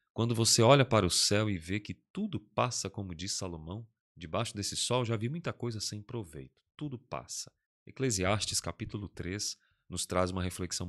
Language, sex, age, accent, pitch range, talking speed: Portuguese, male, 30-49, Brazilian, 90-110 Hz, 175 wpm